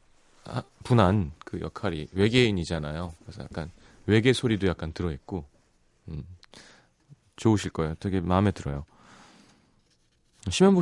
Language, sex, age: Korean, male, 30-49